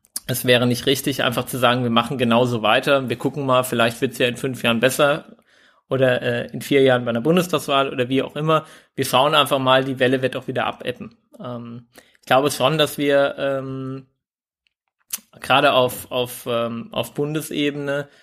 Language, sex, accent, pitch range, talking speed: German, male, German, 130-145 Hz, 190 wpm